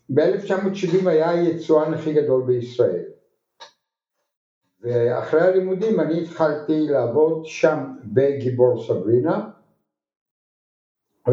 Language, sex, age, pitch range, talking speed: Hebrew, male, 60-79, 115-155 Hz, 80 wpm